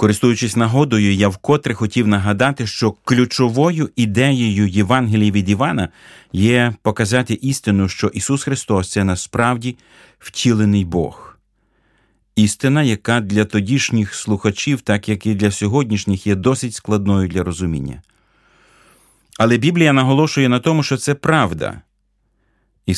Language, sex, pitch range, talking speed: Ukrainian, male, 100-125 Hz, 125 wpm